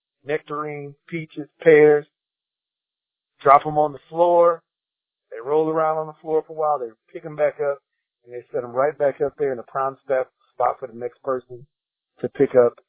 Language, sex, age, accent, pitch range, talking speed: English, male, 50-69, American, 145-210 Hz, 190 wpm